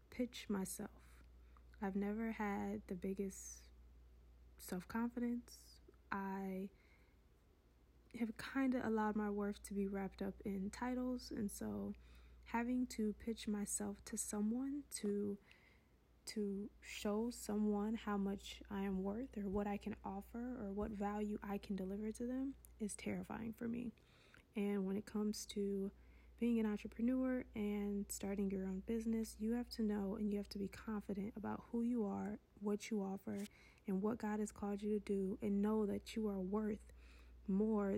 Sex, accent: female, American